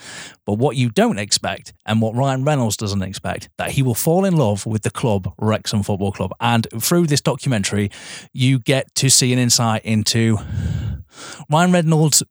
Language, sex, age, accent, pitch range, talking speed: English, male, 30-49, British, 110-140 Hz, 175 wpm